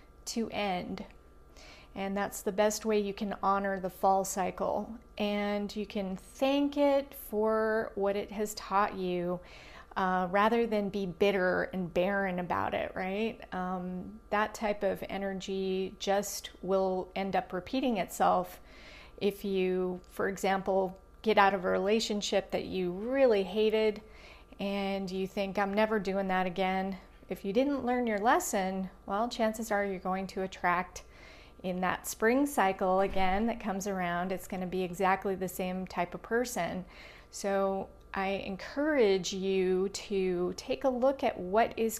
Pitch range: 185-215 Hz